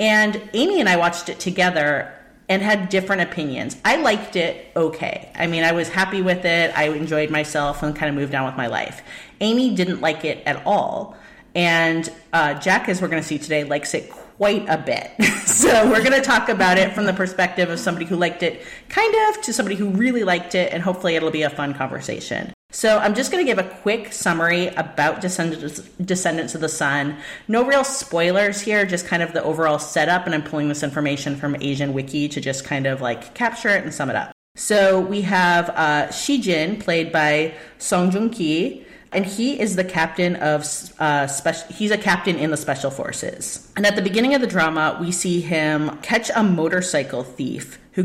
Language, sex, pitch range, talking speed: English, female, 155-200 Hz, 205 wpm